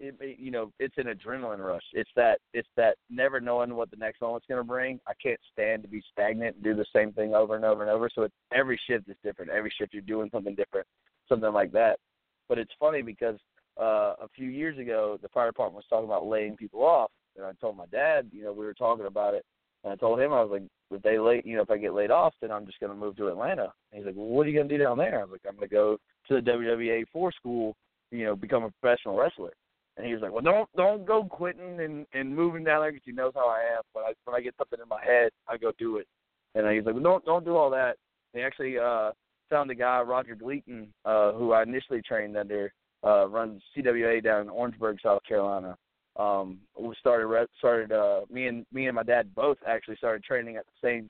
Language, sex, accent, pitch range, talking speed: English, male, American, 105-135 Hz, 255 wpm